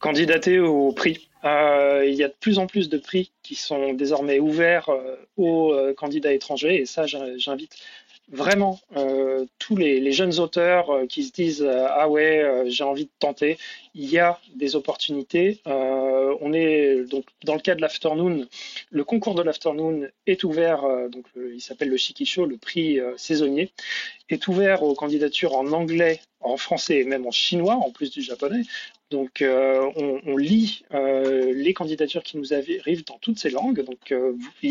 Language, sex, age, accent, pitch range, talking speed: French, male, 30-49, French, 140-185 Hz, 175 wpm